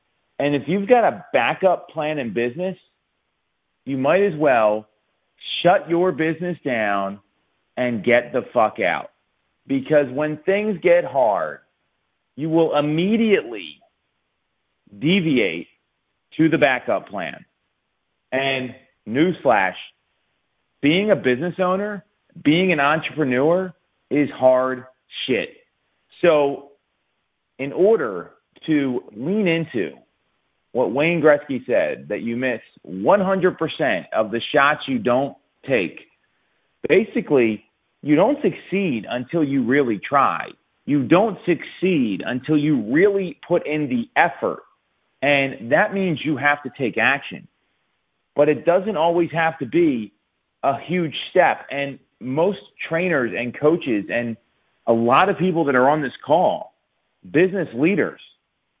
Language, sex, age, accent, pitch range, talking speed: English, male, 40-59, American, 130-180 Hz, 120 wpm